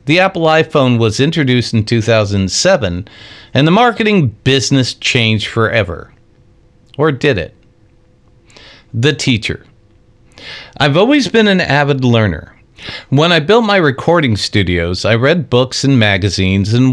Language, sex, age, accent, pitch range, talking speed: English, male, 50-69, American, 110-145 Hz, 130 wpm